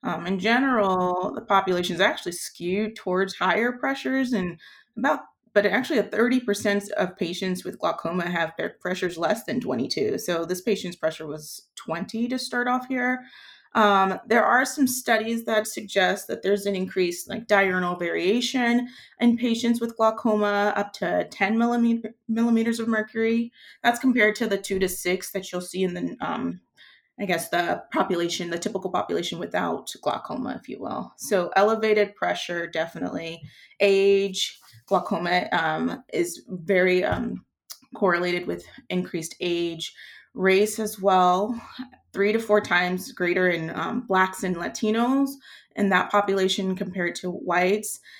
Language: English